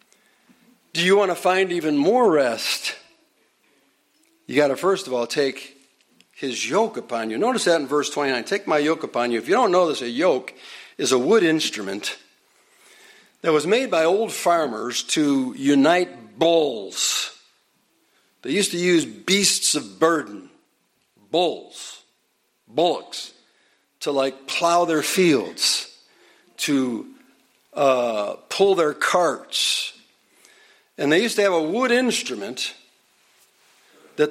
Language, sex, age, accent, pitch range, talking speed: English, male, 60-79, American, 160-230 Hz, 135 wpm